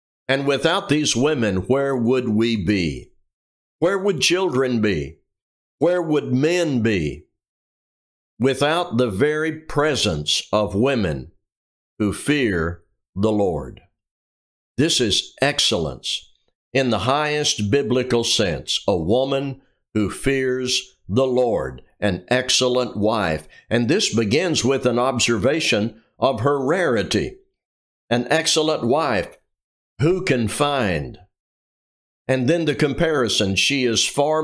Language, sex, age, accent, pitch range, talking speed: English, male, 60-79, American, 105-140 Hz, 115 wpm